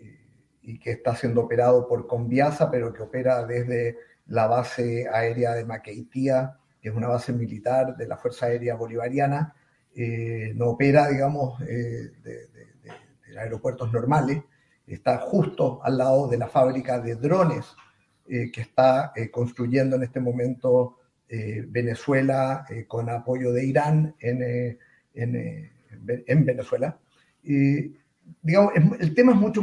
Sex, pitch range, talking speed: male, 125-160 Hz, 150 wpm